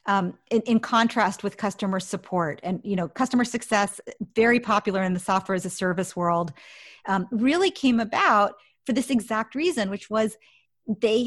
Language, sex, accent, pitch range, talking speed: English, female, American, 185-230 Hz, 170 wpm